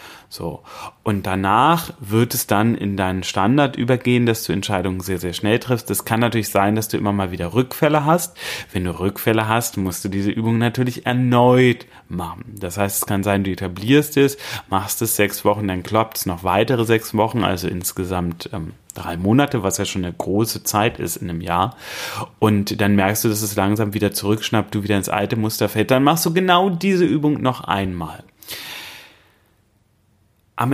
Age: 30-49